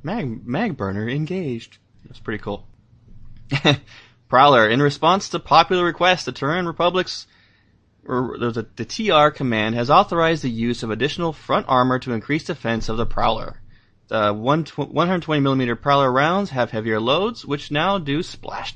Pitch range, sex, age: 115-150 Hz, male, 20-39